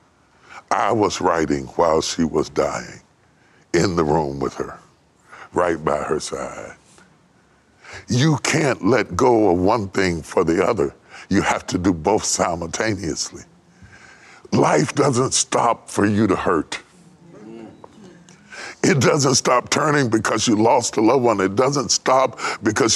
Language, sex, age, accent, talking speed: English, female, 60-79, American, 140 wpm